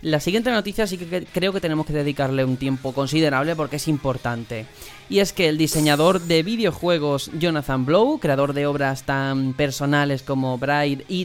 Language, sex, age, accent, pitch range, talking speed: Spanish, male, 20-39, Spanish, 140-190 Hz, 175 wpm